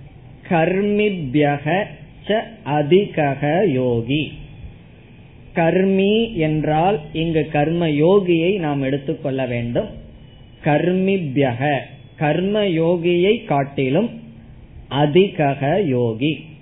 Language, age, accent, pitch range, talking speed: Tamil, 20-39, native, 135-170 Hz, 45 wpm